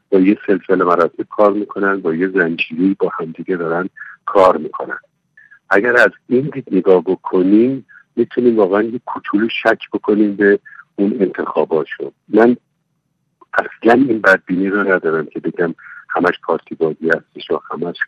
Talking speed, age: 145 wpm, 50-69